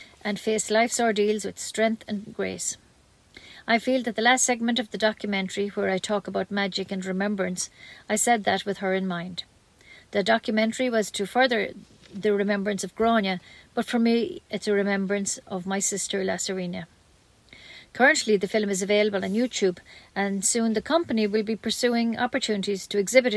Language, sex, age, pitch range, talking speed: English, female, 40-59, 195-235 Hz, 170 wpm